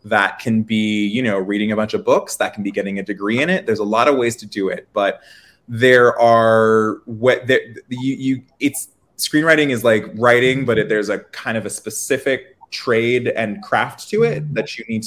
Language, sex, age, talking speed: English, male, 20-39, 210 wpm